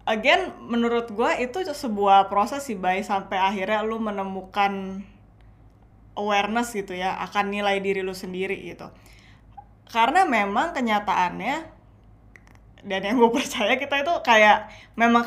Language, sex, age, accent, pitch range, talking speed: Indonesian, female, 20-39, native, 195-230 Hz, 125 wpm